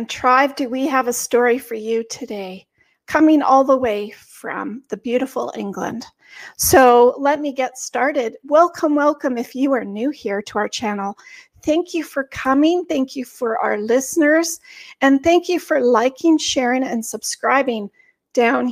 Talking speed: 160 wpm